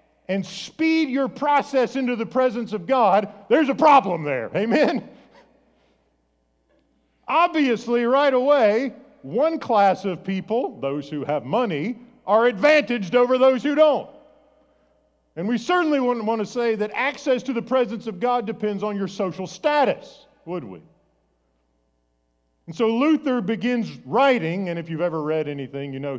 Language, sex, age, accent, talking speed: English, male, 50-69, American, 150 wpm